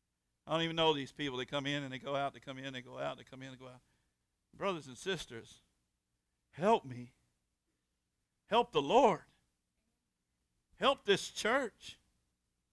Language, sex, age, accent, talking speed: English, male, 50-69, American, 170 wpm